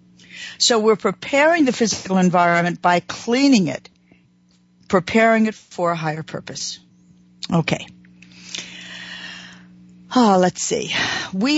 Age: 60-79